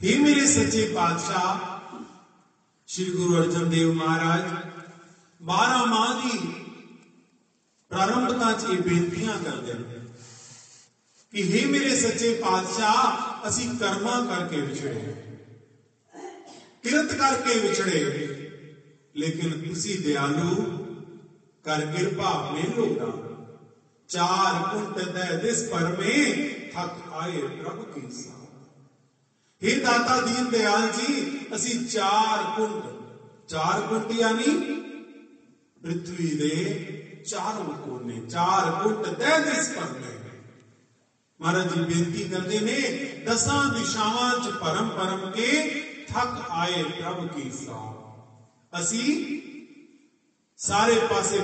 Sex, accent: male, native